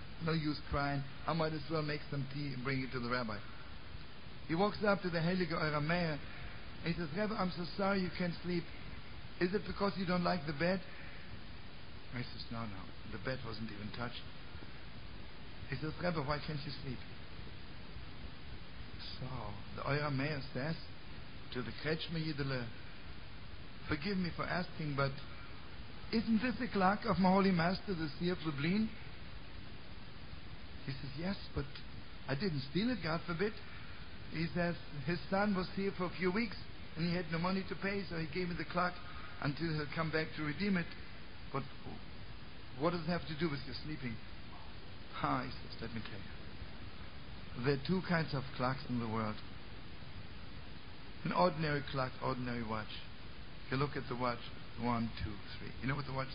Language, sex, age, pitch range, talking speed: English, male, 60-79, 115-175 Hz, 180 wpm